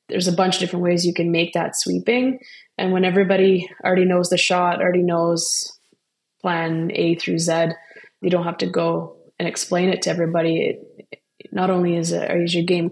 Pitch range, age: 165-185 Hz, 20-39